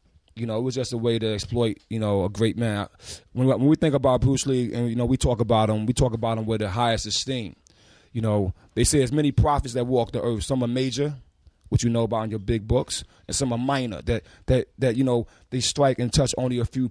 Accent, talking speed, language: American, 265 wpm, English